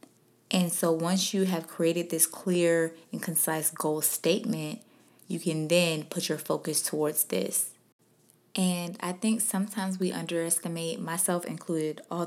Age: 20-39